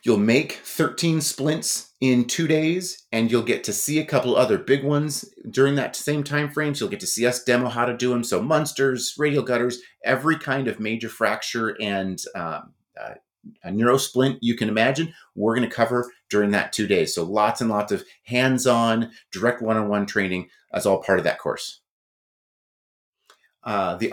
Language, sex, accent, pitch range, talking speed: English, male, American, 115-155 Hz, 190 wpm